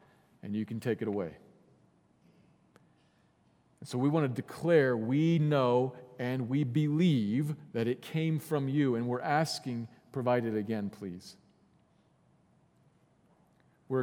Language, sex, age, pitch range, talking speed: English, male, 40-59, 115-145 Hz, 125 wpm